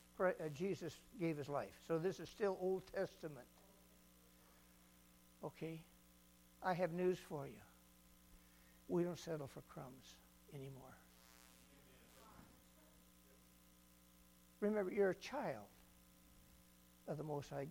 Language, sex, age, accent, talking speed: English, male, 60-79, American, 100 wpm